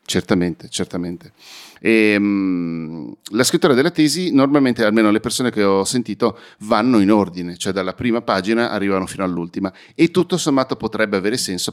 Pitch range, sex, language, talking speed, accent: 95-120 Hz, male, Italian, 160 wpm, native